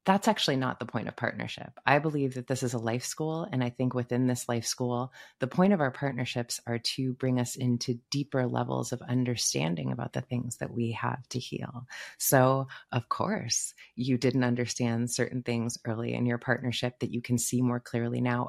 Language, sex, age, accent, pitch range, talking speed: English, female, 30-49, American, 120-140 Hz, 205 wpm